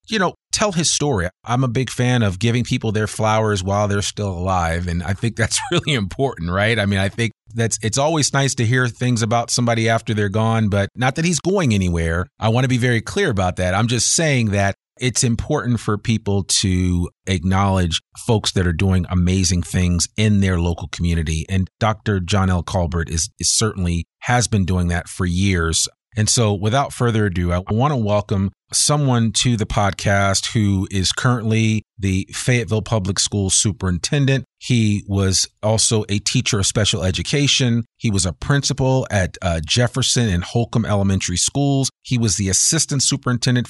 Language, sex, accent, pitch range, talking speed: English, male, American, 95-125 Hz, 185 wpm